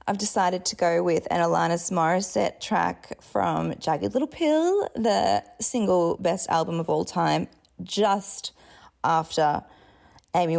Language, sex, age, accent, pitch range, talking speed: English, female, 20-39, Australian, 170-255 Hz, 130 wpm